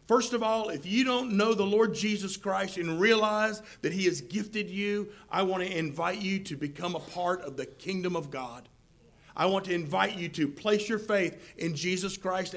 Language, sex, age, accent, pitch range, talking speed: English, male, 40-59, American, 180-245 Hz, 210 wpm